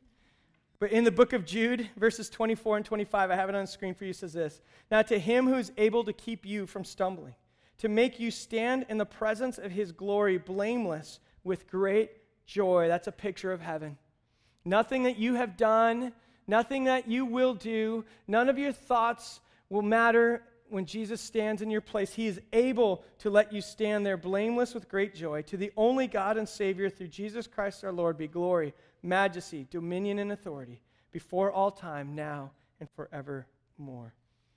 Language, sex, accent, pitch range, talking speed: English, male, American, 170-220 Hz, 185 wpm